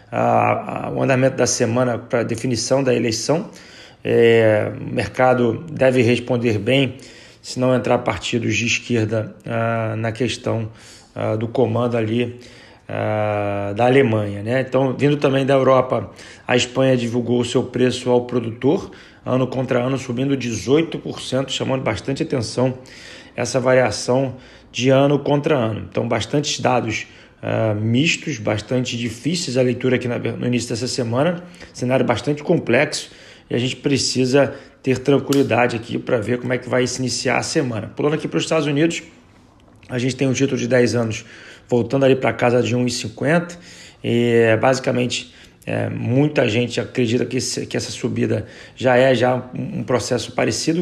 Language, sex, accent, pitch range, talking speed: Portuguese, male, Brazilian, 115-130 Hz, 160 wpm